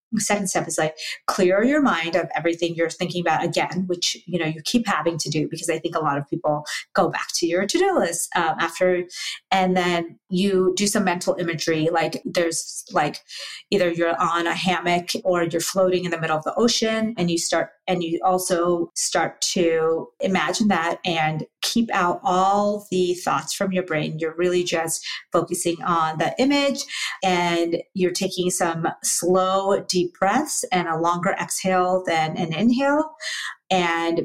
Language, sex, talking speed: English, female, 175 wpm